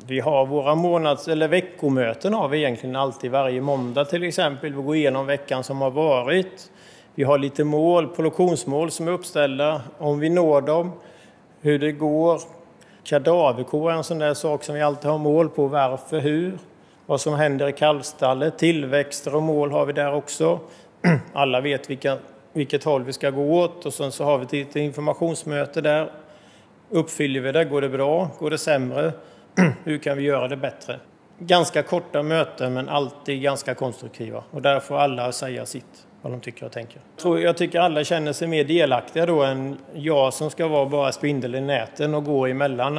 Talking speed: 185 wpm